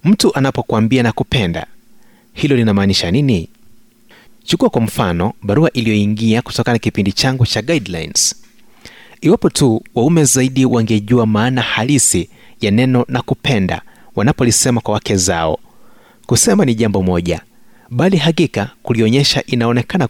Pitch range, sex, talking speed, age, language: 105-135 Hz, male, 120 wpm, 30-49, Swahili